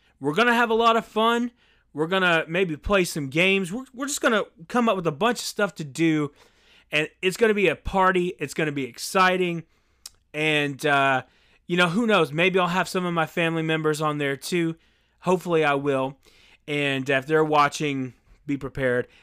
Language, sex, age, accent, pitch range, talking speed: English, male, 30-49, American, 130-185 Hz, 210 wpm